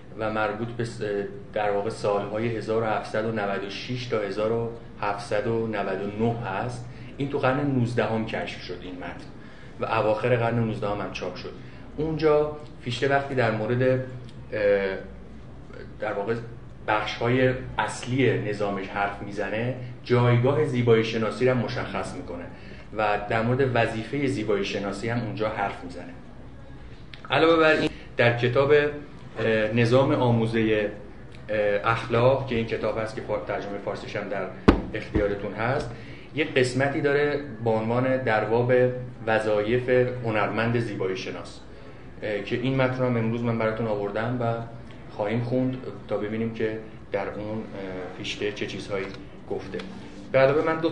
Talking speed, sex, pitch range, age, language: 125 wpm, male, 105-130 Hz, 30-49, Persian